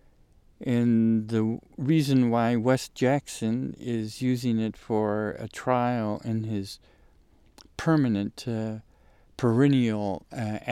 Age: 50-69